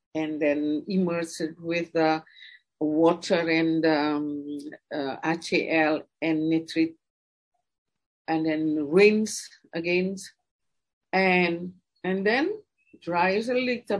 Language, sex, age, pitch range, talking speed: English, female, 50-69, 155-230 Hz, 100 wpm